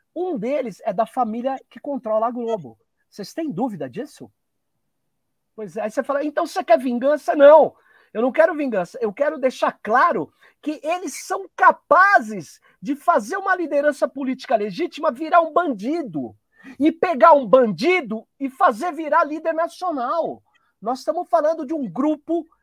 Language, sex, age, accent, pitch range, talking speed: Portuguese, male, 50-69, Brazilian, 260-335 Hz, 155 wpm